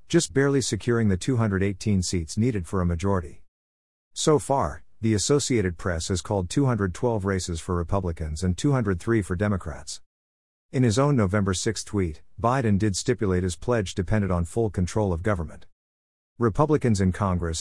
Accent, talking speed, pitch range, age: American, 155 wpm, 90-115 Hz, 50-69